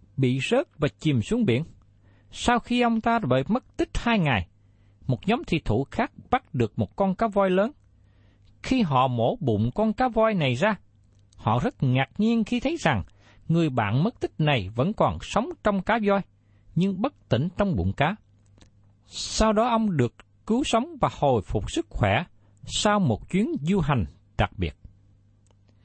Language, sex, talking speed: Vietnamese, male, 180 wpm